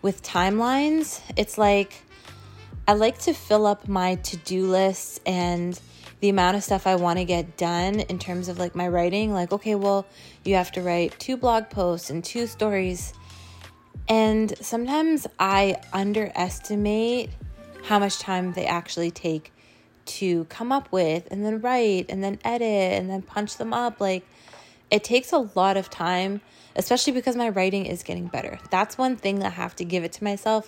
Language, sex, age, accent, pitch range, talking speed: English, female, 20-39, American, 175-210 Hz, 180 wpm